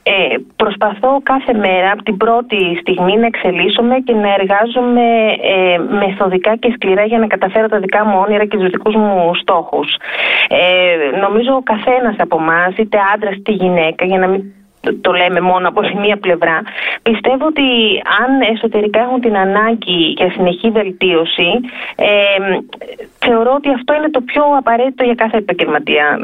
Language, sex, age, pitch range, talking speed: Greek, female, 30-49, 185-235 Hz, 160 wpm